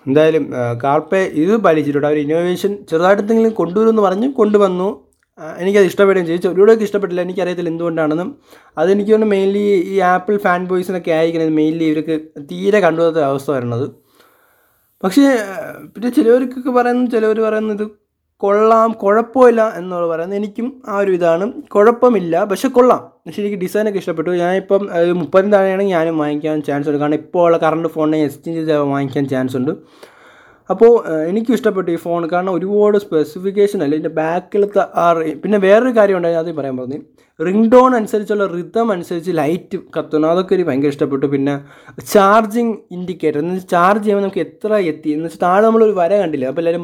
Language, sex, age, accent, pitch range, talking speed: Malayalam, male, 20-39, native, 160-210 Hz, 150 wpm